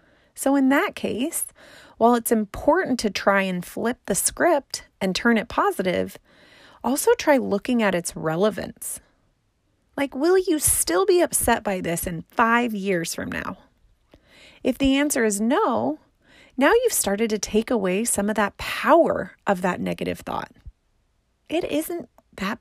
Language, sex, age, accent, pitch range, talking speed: English, female, 30-49, American, 205-280 Hz, 155 wpm